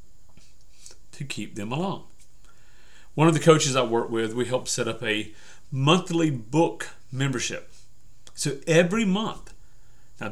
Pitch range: 115-145 Hz